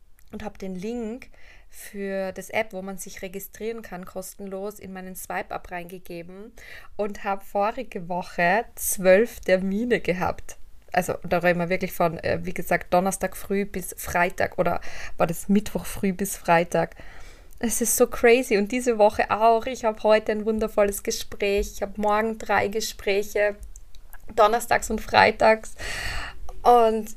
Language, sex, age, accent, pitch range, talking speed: German, female, 20-39, German, 185-215 Hz, 145 wpm